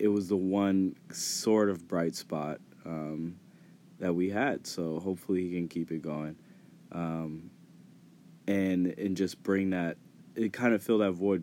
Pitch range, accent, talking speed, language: 85-100 Hz, American, 165 wpm, English